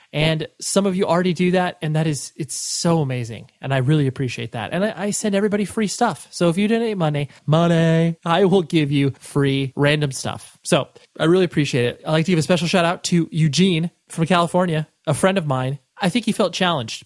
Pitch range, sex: 140-185 Hz, male